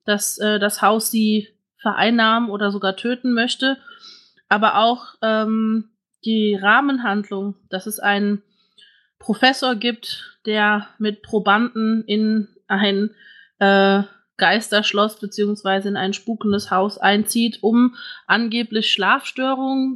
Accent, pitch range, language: German, 200-230 Hz, German